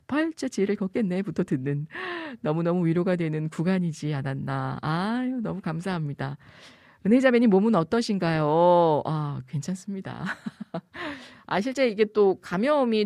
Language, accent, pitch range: Korean, native, 155-230 Hz